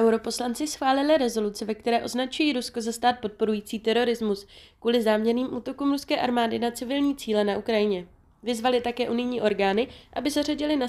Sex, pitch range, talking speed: female, 205-255 Hz, 155 wpm